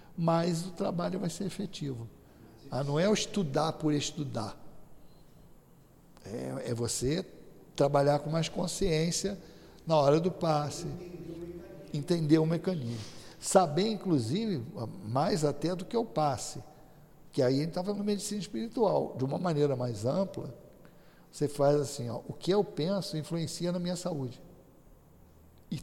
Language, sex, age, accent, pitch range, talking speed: Portuguese, male, 60-79, Brazilian, 140-190 Hz, 140 wpm